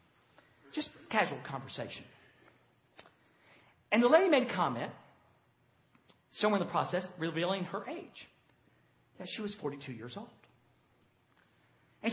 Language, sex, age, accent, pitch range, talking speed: English, male, 40-59, American, 150-245 Hz, 115 wpm